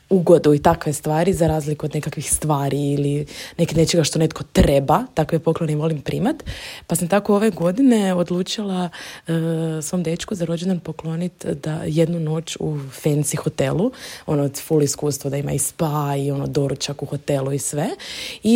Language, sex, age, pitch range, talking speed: Croatian, female, 20-39, 155-185 Hz, 170 wpm